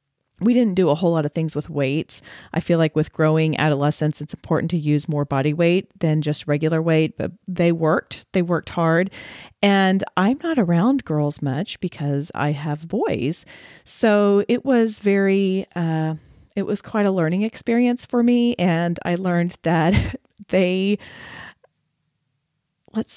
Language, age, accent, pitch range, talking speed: English, 40-59, American, 155-195 Hz, 160 wpm